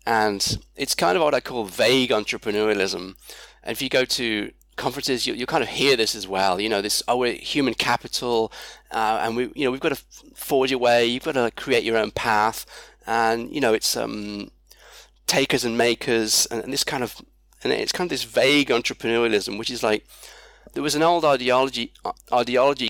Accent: British